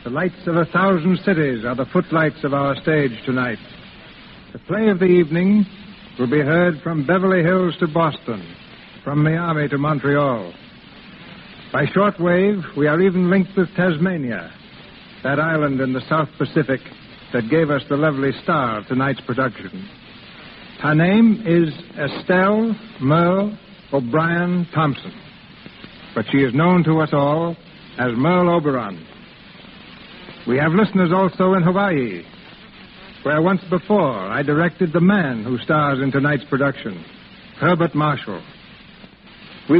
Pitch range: 140-185 Hz